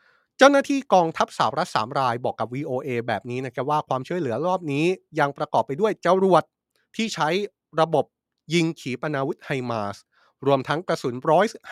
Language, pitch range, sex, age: Thai, 125-165 Hz, male, 20-39